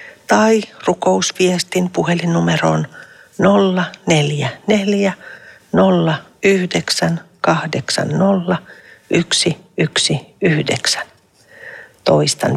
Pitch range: 160-210 Hz